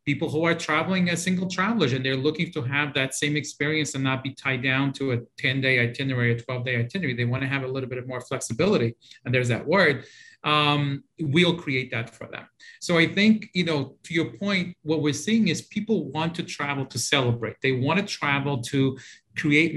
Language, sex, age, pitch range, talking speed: English, male, 40-59, 125-155 Hz, 215 wpm